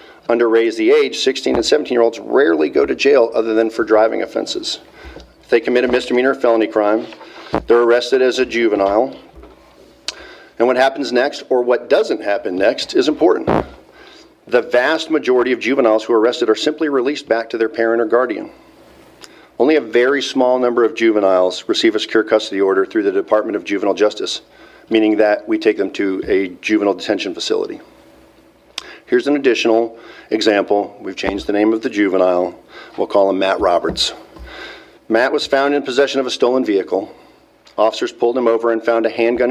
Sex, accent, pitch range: male, American, 110-130 Hz